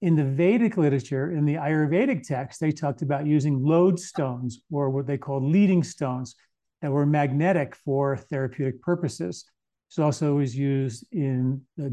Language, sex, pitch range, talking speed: English, male, 140-165 Hz, 150 wpm